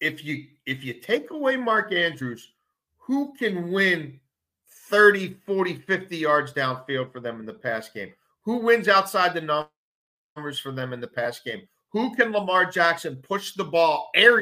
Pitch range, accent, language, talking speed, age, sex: 125-170 Hz, American, English, 170 wpm, 40-59, male